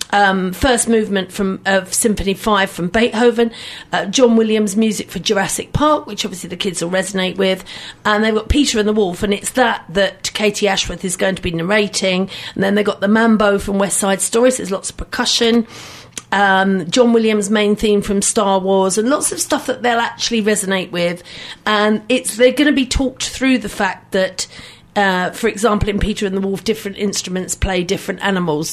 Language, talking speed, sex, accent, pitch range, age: English, 205 wpm, female, British, 195-240 Hz, 40-59